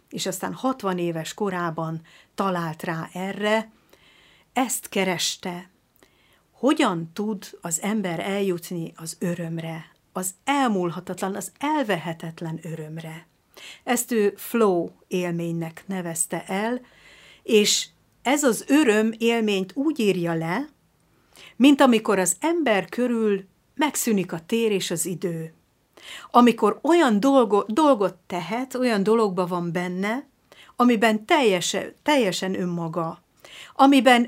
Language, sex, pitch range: Hungarian, female, 180-230 Hz